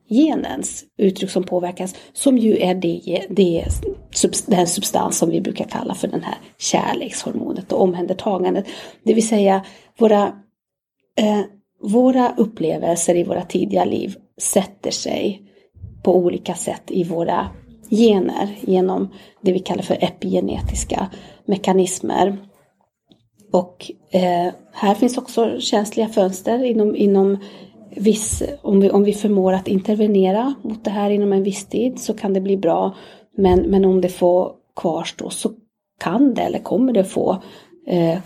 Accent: native